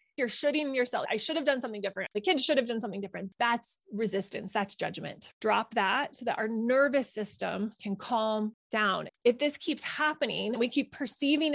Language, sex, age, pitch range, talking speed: English, female, 20-39, 210-275 Hz, 190 wpm